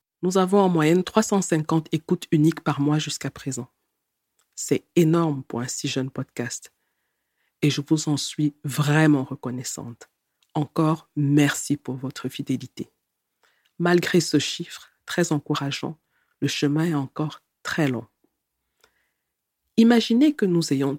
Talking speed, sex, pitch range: 130 wpm, female, 140-165 Hz